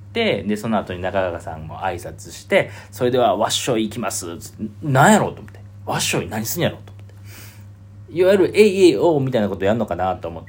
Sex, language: male, Japanese